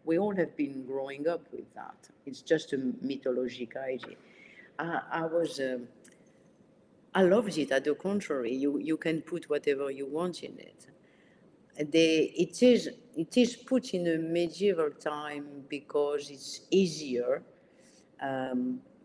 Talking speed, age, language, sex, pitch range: 150 wpm, 50-69, English, female, 135-175 Hz